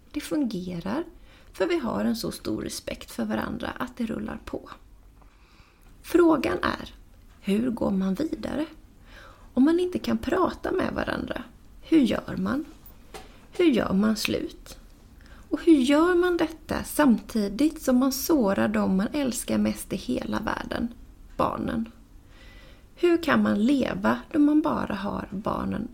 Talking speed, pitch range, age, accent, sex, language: 140 wpm, 205-300 Hz, 30-49, native, female, Swedish